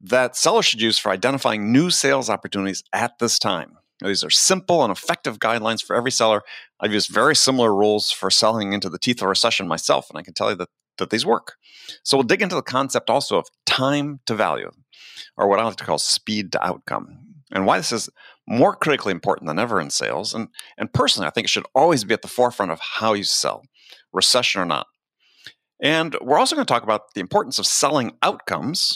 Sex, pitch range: male, 105-140 Hz